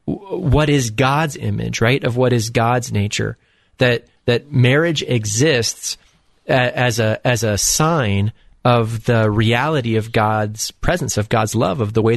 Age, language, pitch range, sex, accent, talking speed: 30-49, English, 105-125 Hz, male, American, 155 wpm